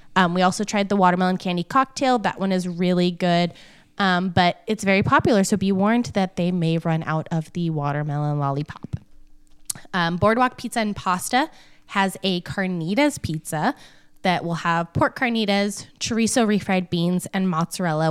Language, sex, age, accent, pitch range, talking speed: English, female, 20-39, American, 170-220 Hz, 160 wpm